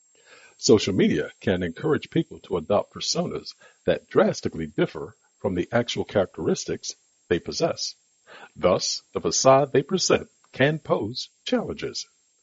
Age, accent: 60-79, American